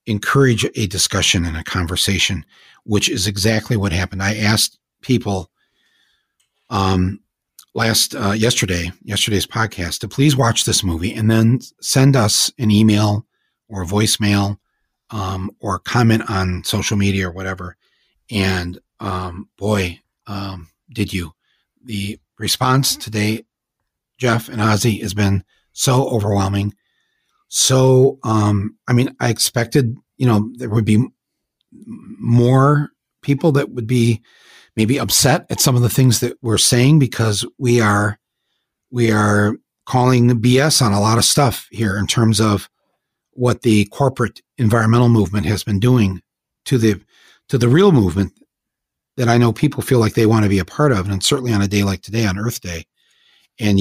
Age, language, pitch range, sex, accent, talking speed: 40-59, English, 100-120 Hz, male, American, 155 wpm